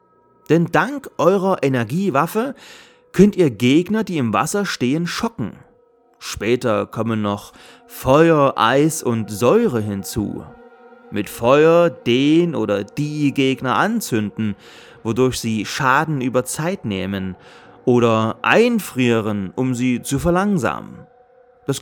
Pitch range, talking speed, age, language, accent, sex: 120-190 Hz, 110 wpm, 30-49, German, German, male